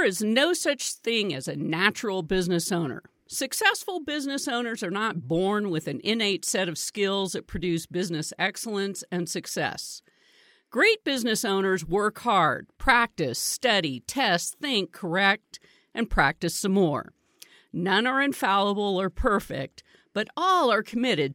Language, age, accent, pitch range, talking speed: English, 50-69, American, 170-240 Hz, 145 wpm